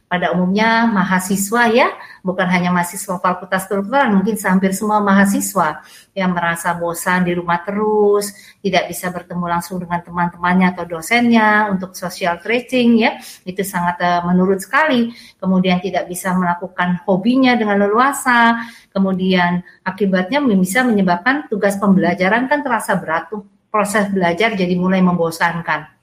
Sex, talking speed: female, 130 wpm